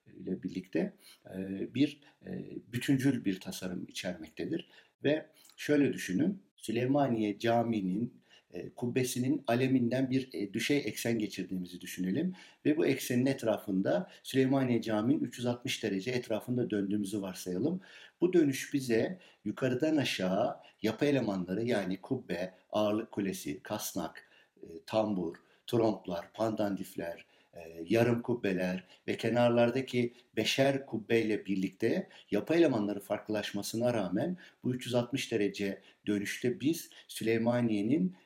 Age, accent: 60-79, native